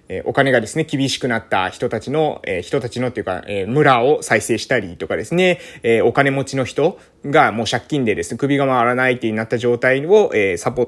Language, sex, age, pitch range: Japanese, male, 20-39, 125-200 Hz